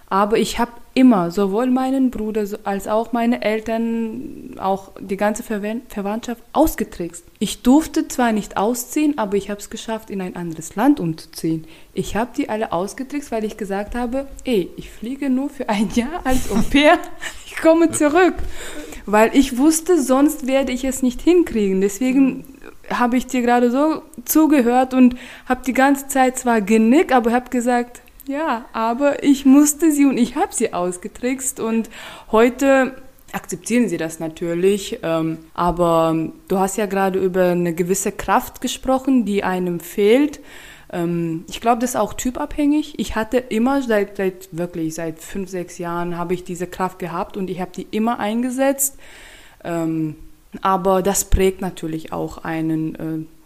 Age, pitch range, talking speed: 20-39, 190-260 Hz, 160 wpm